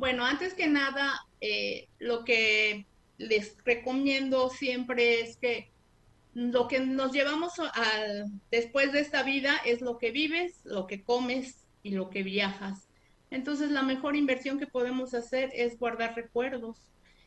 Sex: female